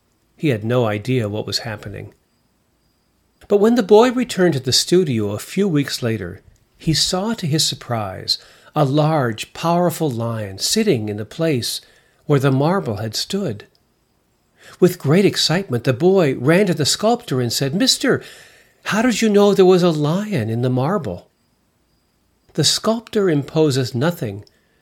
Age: 50-69